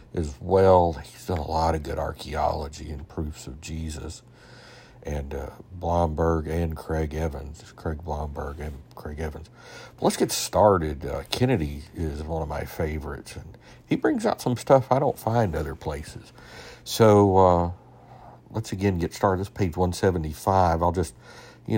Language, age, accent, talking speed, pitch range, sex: English, 60-79, American, 165 wpm, 80-100 Hz, male